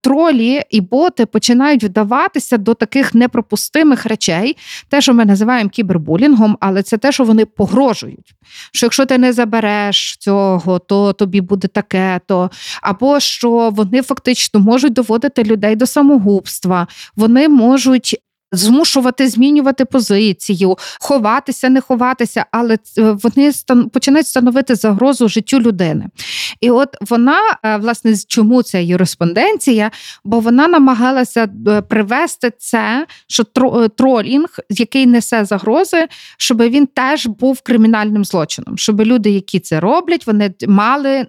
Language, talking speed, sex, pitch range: Ukrainian, 125 wpm, female, 205-265 Hz